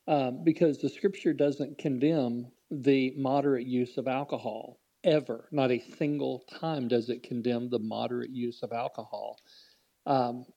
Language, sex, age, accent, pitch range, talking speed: English, male, 40-59, American, 125-145 Hz, 140 wpm